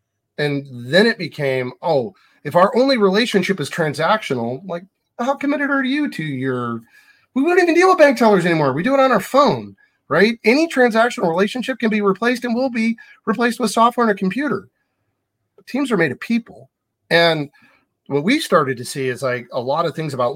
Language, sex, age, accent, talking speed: English, male, 40-59, American, 195 wpm